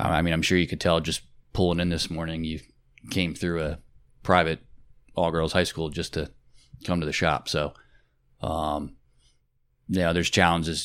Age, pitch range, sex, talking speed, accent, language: 20-39, 80-90 Hz, male, 175 wpm, American, English